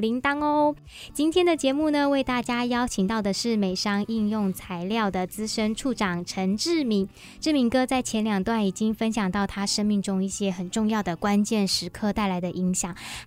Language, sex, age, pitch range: Chinese, male, 20-39, 195-250 Hz